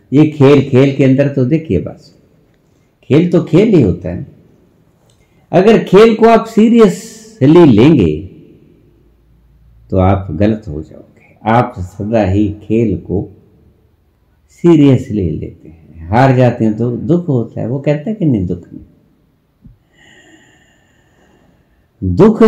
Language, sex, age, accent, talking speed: English, male, 60-79, Indian, 130 wpm